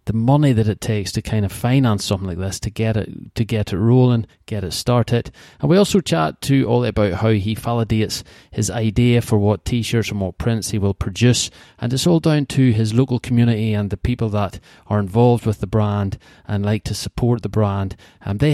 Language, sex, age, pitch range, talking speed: English, male, 30-49, 100-115 Hz, 220 wpm